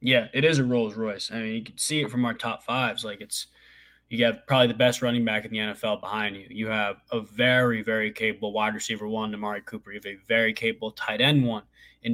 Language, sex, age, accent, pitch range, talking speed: English, male, 20-39, American, 110-125 Hz, 245 wpm